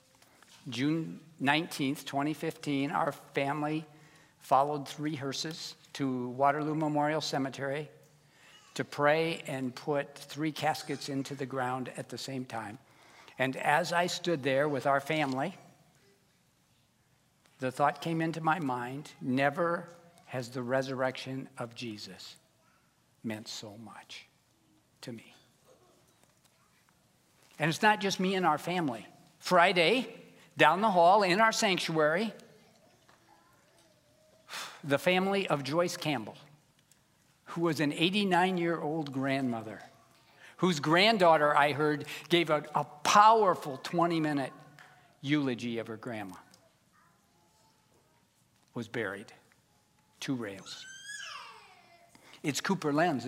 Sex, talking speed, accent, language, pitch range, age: male, 105 wpm, American, English, 135-170 Hz, 60-79